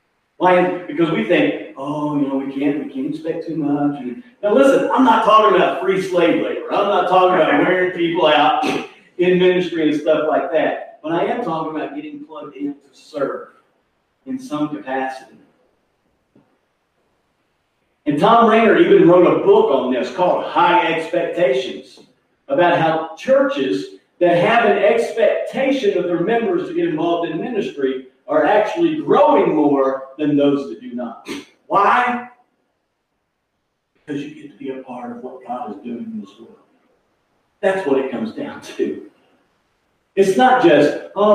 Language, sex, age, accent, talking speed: English, male, 40-59, American, 165 wpm